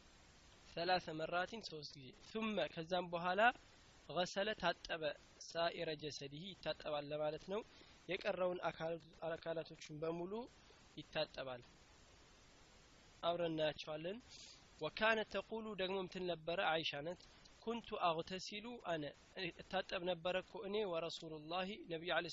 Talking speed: 85 wpm